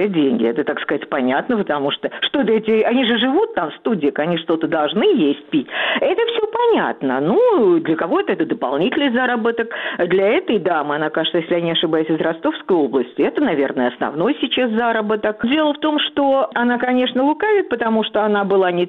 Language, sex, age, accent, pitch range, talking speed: Russian, female, 50-69, native, 180-280 Hz, 185 wpm